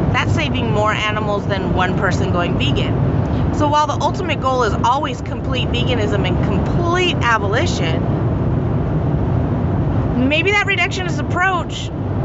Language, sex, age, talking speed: English, female, 30-49, 120 wpm